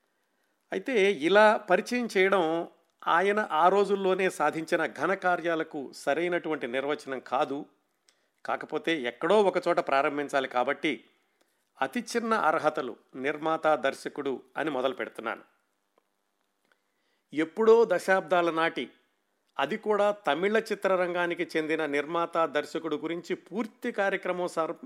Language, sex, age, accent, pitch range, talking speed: Telugu, male, 50-69, native, 150-195 Hz, 85 wpm